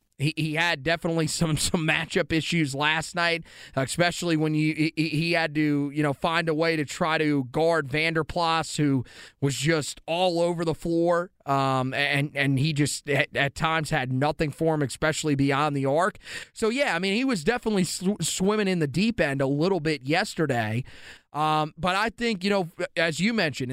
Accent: American